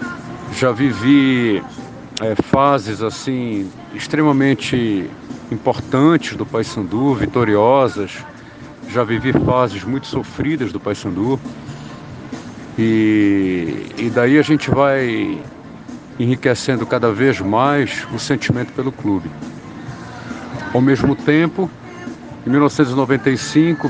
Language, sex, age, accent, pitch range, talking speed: Portuguese, male, 60-79, Brazilian, 115-135 Hz, 85 wpm